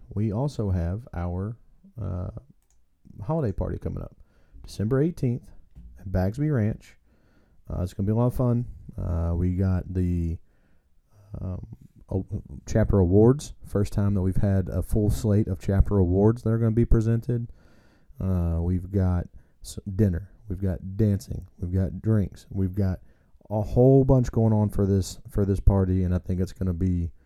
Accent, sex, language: American, male, English